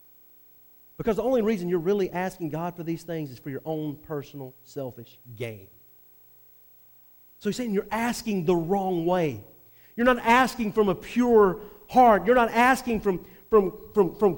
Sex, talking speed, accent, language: male, 165 wpm, American, English